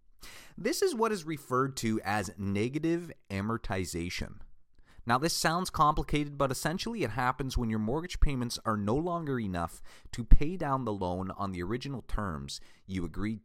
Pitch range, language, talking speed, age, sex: 95-155 Hz, English, 160 wpm, 30-49, male